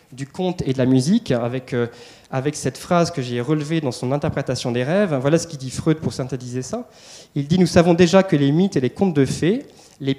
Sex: male